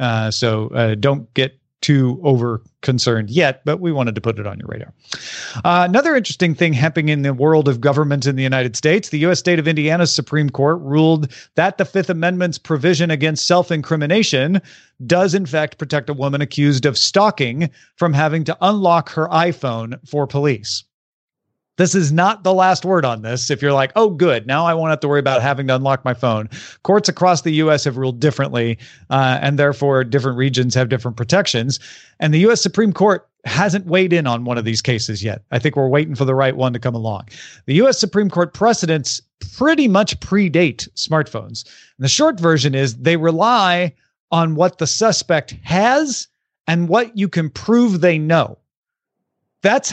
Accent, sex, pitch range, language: American, male, 130-175 Hz, English